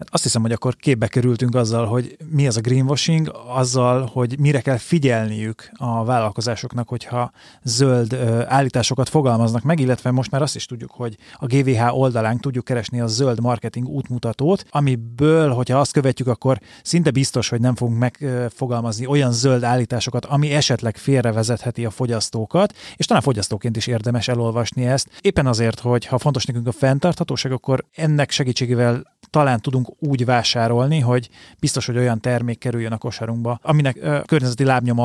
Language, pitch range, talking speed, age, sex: Hungarian, 115-135 Hz, 160 wpm, 30-49, male